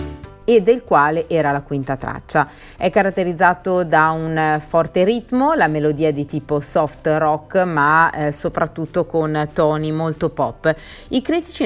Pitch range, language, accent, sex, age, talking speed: 150-190 Hz, Italian, native, female, 30-49, 145 wpm